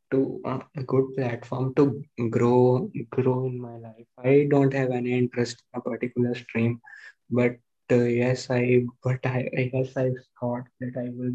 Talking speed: 170 wpm